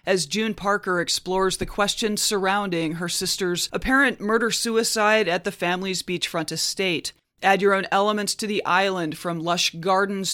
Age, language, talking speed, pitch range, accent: 30-49, English, 150 wpm, 175-205 Hz, American